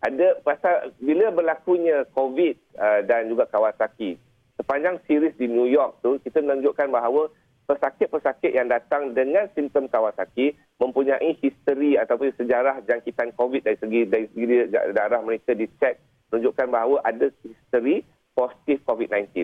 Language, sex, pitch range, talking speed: Malay, male, 120-170 Hz, 130 wpm